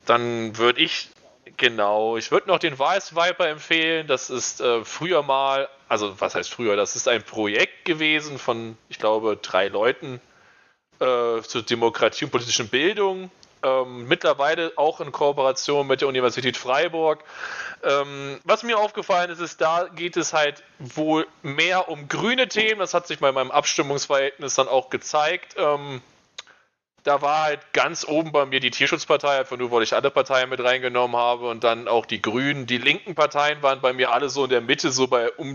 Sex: male